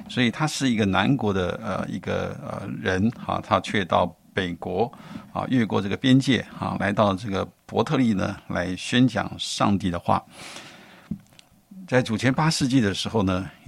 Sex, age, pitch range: male, 50-69, 100-130 Hz